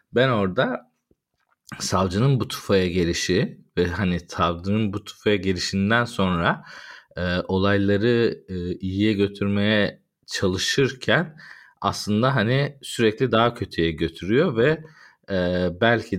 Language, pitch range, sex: Turkish, 90-105 Hz, male